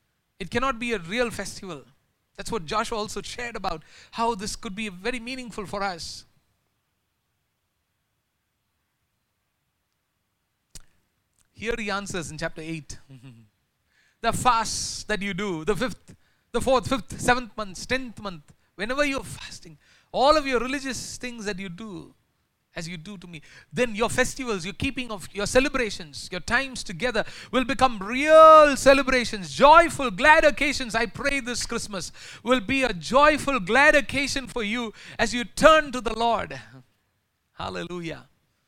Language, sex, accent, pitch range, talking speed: English, male, Indian, 155-250 Hz, 145 wpm